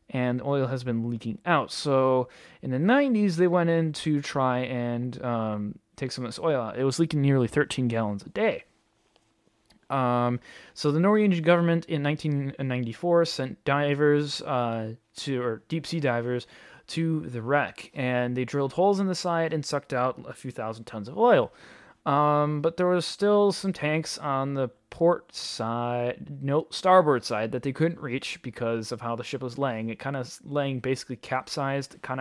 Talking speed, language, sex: 175 wpm, English, male